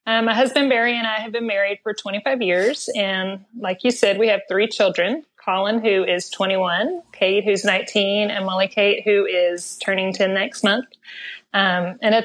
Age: 30-49